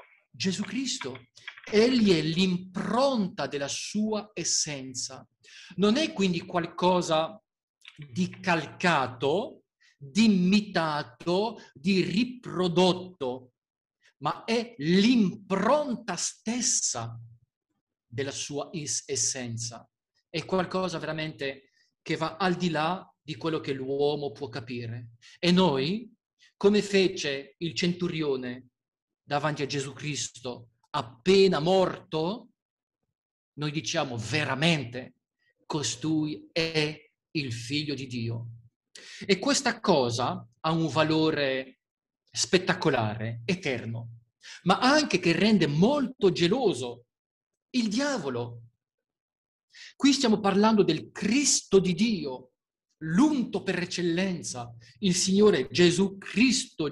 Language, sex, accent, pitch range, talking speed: Italian, male, native, 135-195 Hz, 95 wpm